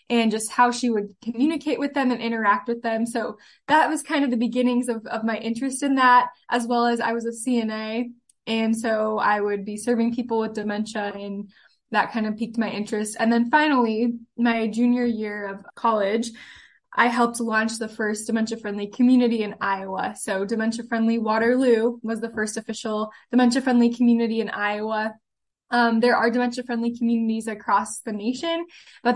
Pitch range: 220-245 Hz